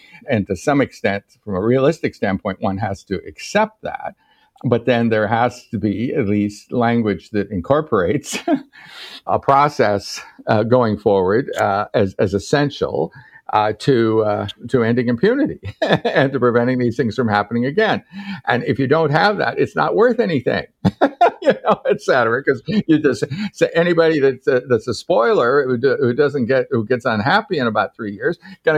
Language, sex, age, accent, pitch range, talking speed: English, male, 60-79, American, 105-165 Hz, 175 wpm